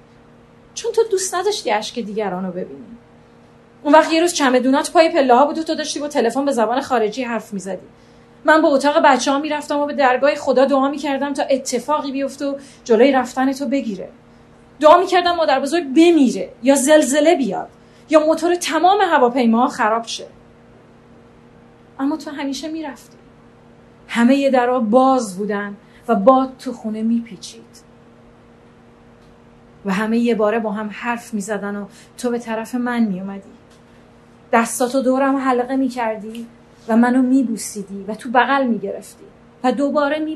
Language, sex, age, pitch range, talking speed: Persian, female, 30-49, 235-310 Hz, 160 wpm